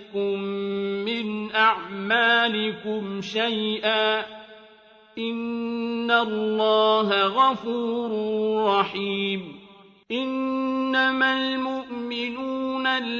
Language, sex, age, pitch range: Arabic, male, 50-69, 215-235 Hz